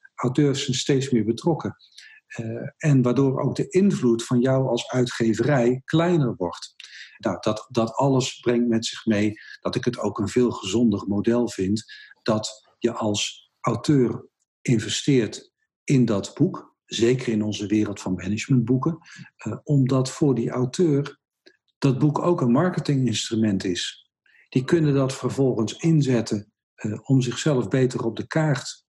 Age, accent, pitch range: 50-69, Dutch, 110-140 Hz